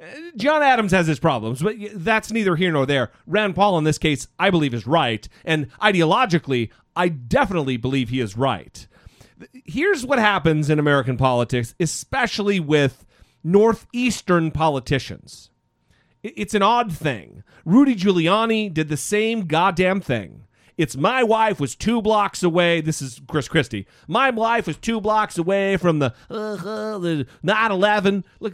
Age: 40-59